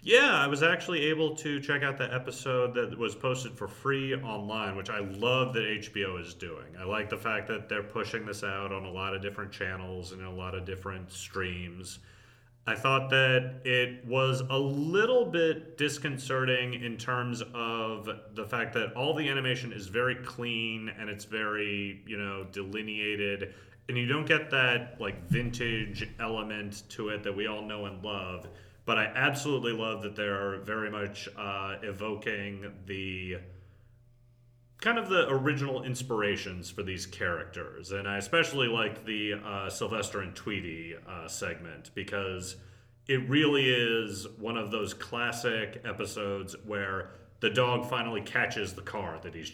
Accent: American